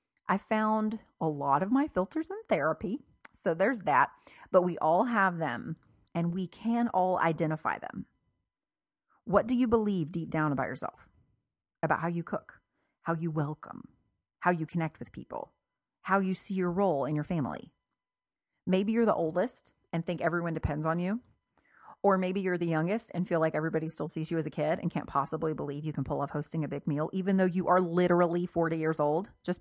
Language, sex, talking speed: English, female, 195 wpm